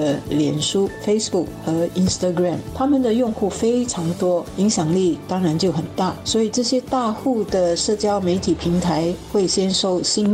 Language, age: Chinese, 50-69